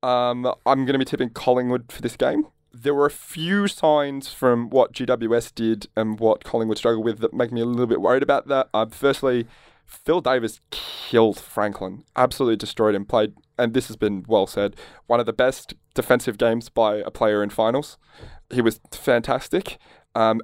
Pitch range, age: 105-125 Hz, 20-39